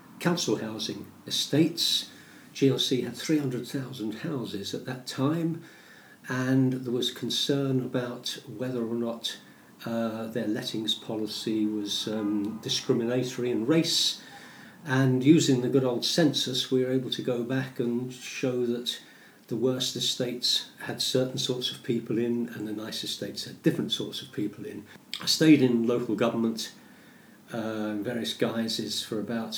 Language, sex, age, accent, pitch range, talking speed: English, male, 50-69, British, 115-140 Hz, 145 wpm